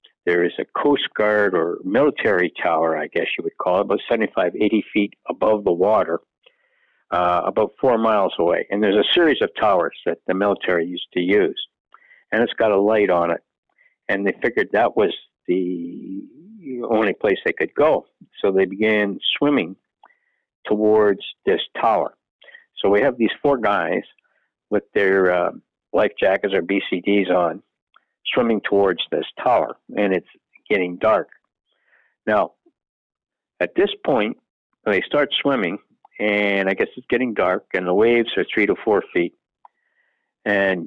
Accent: American